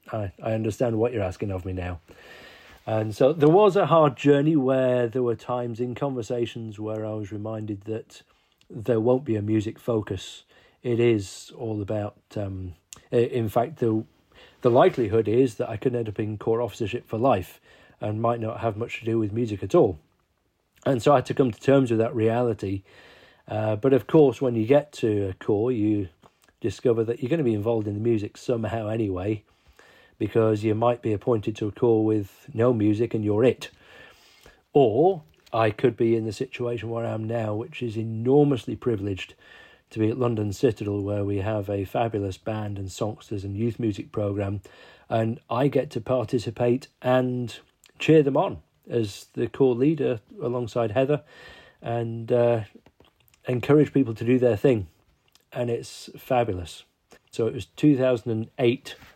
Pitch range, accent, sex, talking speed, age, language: 105-125 Hz, British, male, 180 wpm, 40-59, English